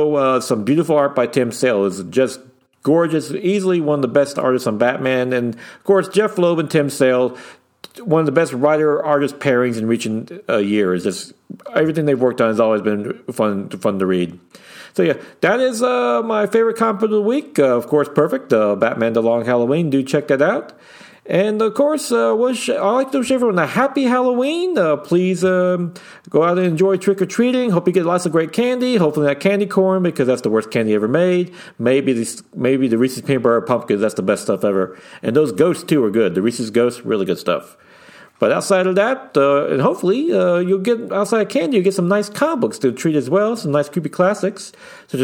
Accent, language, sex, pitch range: American, English, male, 125-195 Hz